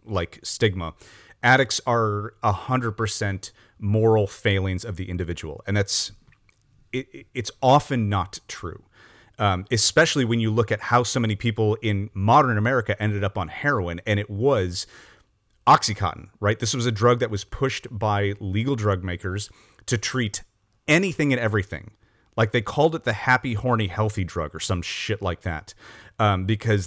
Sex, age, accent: male, 30-49, American